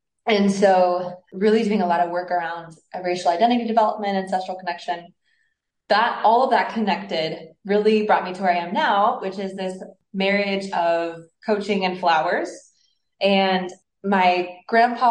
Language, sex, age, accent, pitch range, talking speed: English, female, 20-39, American, 170-195 Hz, 150 wpm